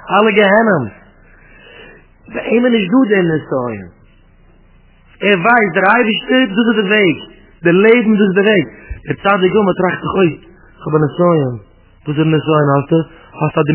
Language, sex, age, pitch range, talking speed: English, male, 30-49, 140-195 Hz, 150 wpm